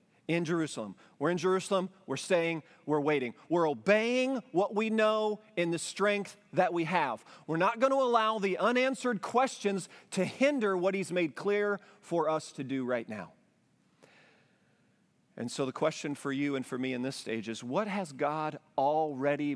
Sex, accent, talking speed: male, American, 175 wpm